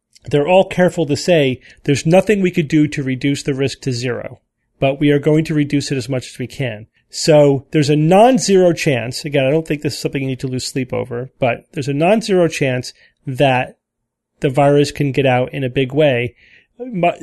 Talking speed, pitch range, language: 215 wpm, 130-165 Hz, English